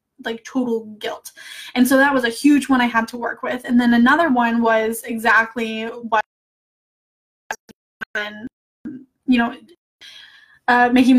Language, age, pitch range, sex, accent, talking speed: English, 10-29, 235-270 Hz, female, American, 140 wpm